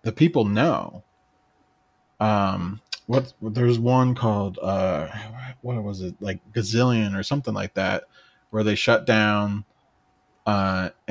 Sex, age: male, 20-39